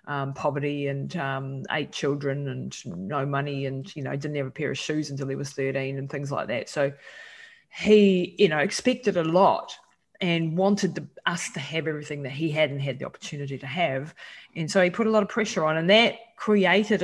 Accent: Australian